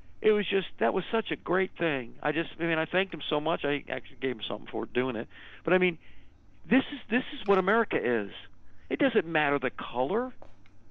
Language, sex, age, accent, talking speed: English, male, 50-69, American, 225 wpm